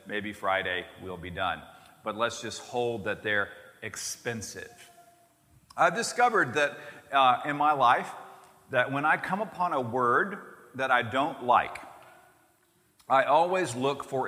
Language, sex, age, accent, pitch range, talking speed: English, male, 40-59, American, 125-170 Hz, 145 wpm